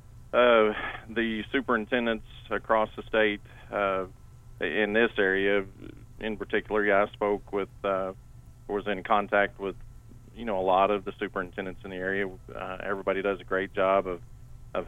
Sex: male